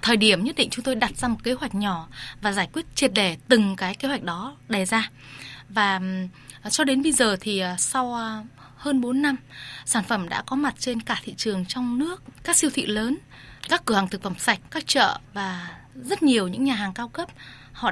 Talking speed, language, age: 220 wpm, Vietnamese, 20-39